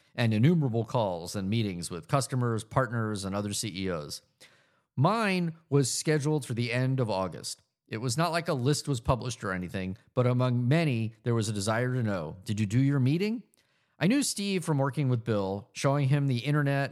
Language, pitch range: English, 105-140 Hz